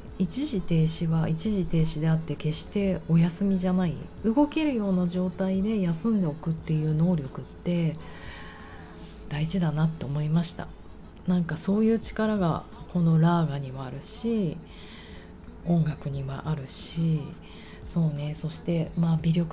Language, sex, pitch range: Japanese, female, 155-190 Hz